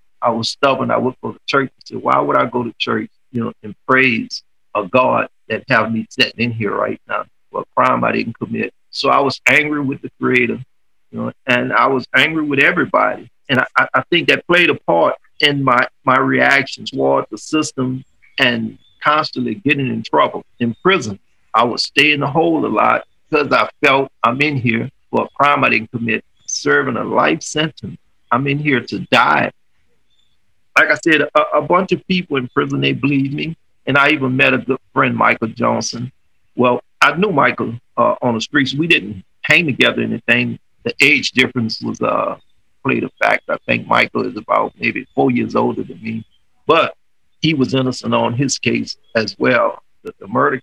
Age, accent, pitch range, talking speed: 50-69, American, 115-140 Hz, 200 wpm